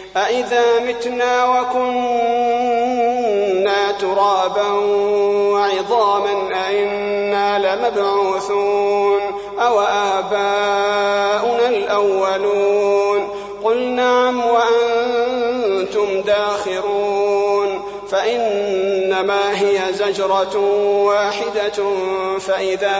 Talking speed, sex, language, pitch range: 50 wpm, male, Arabic, 195-205 Hz